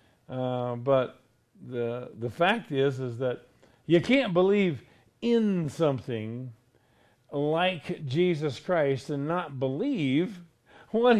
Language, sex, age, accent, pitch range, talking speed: English, male, 50-69, American, 135-200 Hz, 105 wpm